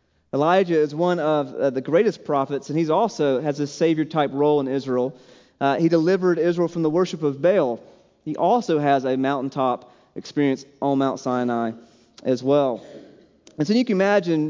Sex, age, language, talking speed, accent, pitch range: male, 30-49, English, 170 wpm, American, 140-190 Hz